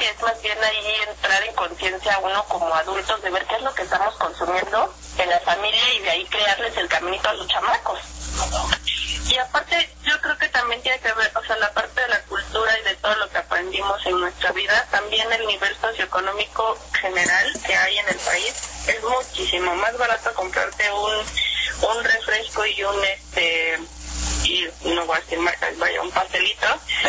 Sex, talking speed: female, 185 wpm